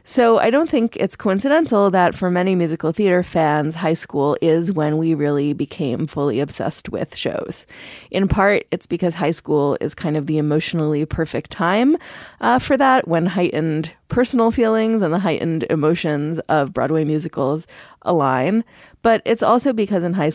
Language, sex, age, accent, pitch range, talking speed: English, female, 30-49, American, 155-200 Hz, 170 wpm